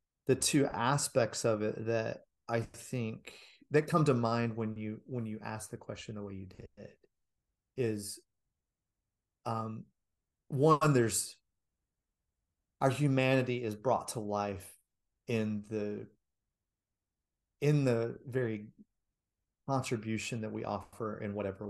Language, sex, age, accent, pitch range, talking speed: English, male, 30-49, American, 105-125 Hz, 125 wpm